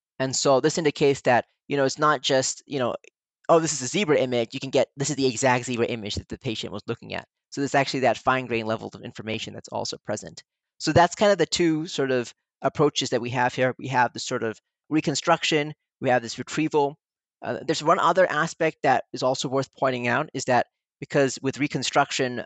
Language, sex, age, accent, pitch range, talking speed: English, male, 30-49, American, 115-140 Hz, 220 wpm